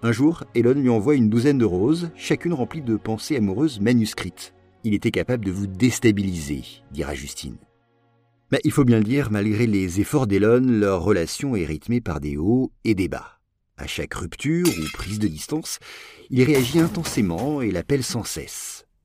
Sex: male